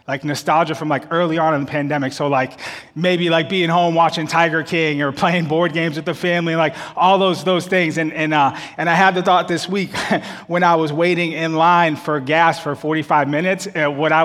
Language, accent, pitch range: English, American, 150-180 Hz